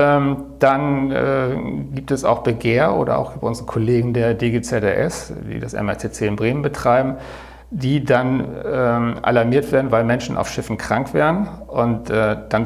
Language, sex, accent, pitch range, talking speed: German, male, German, 110-125 Hz, 155 wpm